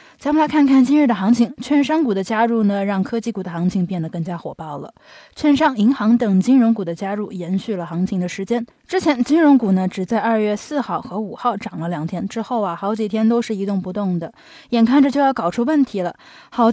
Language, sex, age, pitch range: Chinese, female, 20-39, 190-260 Hz